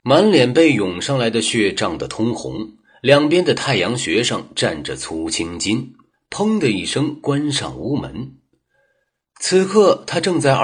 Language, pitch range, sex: Chinese, 125-200 Hz, male